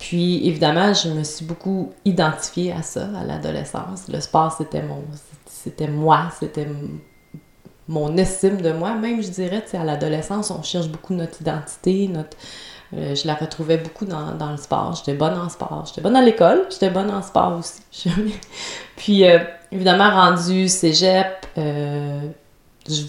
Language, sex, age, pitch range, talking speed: French, female, 30-49, 150-180 Hz, 160 wpm